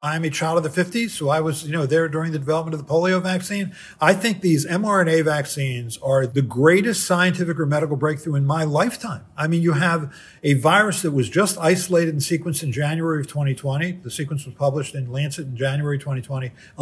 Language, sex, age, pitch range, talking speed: English, male, 50-69, 145-185 Hz, 210 wpm